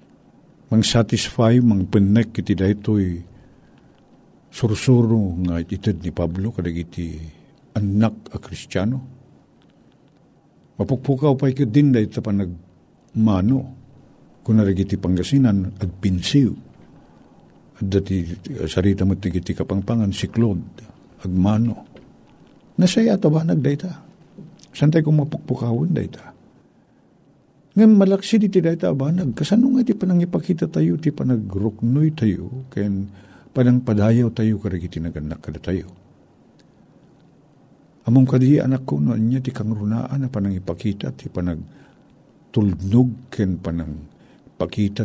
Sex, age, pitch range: male, 50-69, 95-135 Hz